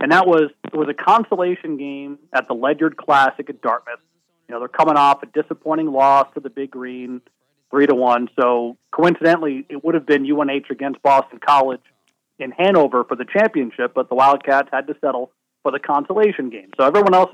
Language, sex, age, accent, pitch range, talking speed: English, male, 40-59, American, 135-170 Hz, 195 wpm